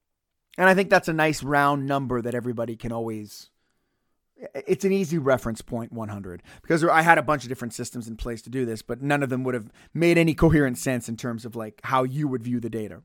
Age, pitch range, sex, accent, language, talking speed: 30-49, 120-170 Hz, male, American, English, 235 wpm